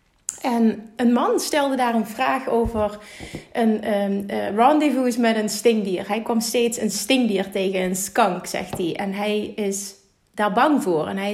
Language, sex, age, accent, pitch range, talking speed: Dutch, female, 30-49, Dutch, 205-255 Hz, 175 wpm